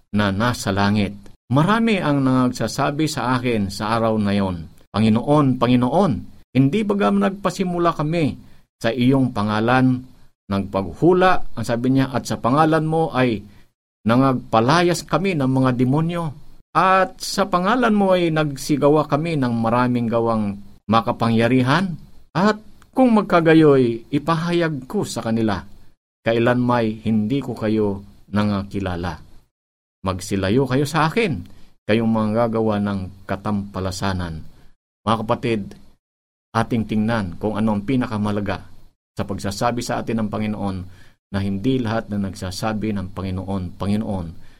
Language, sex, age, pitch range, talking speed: Filipino, male, 50-69, 100-135 Hz, 125 wpm